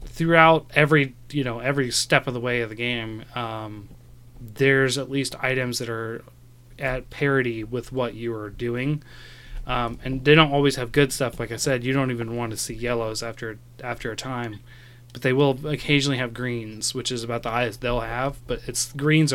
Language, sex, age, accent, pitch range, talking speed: English, male, 20-39, American, 120-135 Hz, 200 wpm